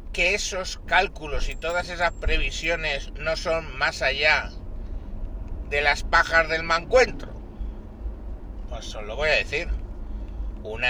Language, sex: Spanish, male